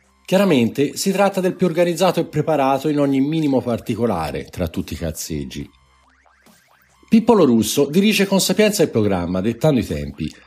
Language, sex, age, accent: Italian, male, 50-69, native